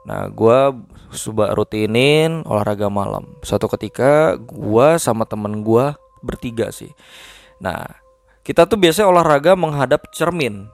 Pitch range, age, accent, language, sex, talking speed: 105-140 Hz, 20-39, native, Indonesian, male, 115 wpm